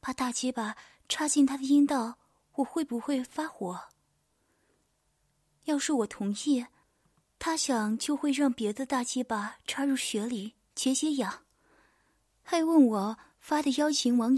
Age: 20-39